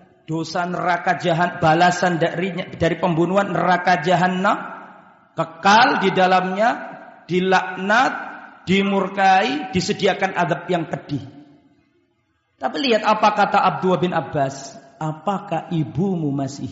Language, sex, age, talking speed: Indonesian, male, 50-69, 100 wpm